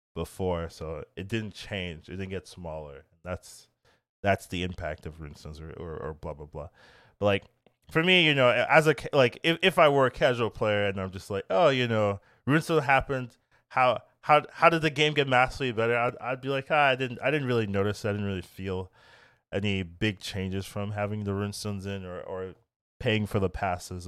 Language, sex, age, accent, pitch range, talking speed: English, male, 20-39, American, 90-120 Hz, 210 wpm